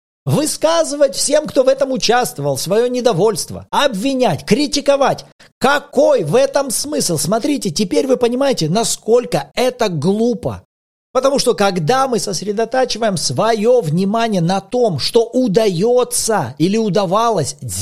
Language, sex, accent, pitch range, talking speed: Russian, male, native, 150-225 Hz, 115 wpm